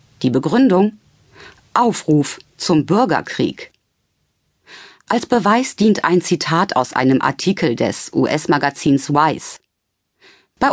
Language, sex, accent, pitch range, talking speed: German, female, German, 135-215 Hz, 95 wpm